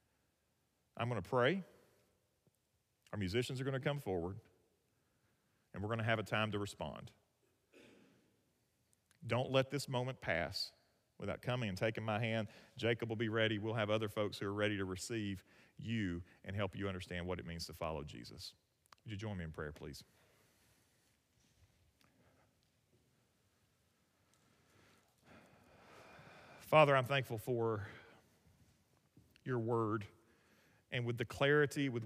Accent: American